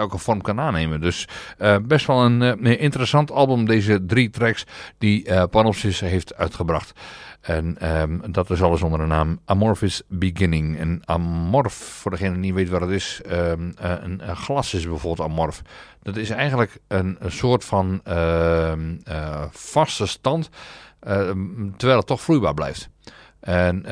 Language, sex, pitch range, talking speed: English, male, 90-120 Hz, 160 wpm